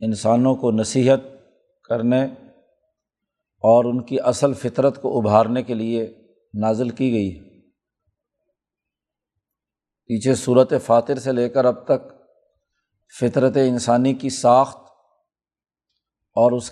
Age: 50-69